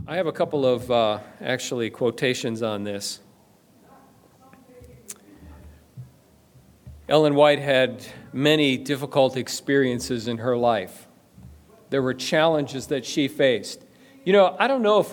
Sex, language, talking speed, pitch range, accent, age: male, English, 125 wpm, 125-165 Hz, American, 40-59